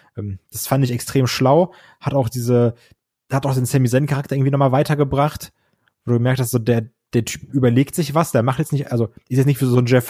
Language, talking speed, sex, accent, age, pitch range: German, 230 wpm, male, German, 20-39, 120-140 Hz